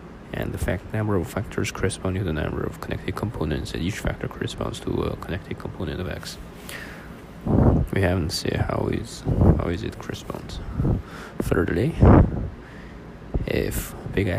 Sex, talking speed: male, 145 wpm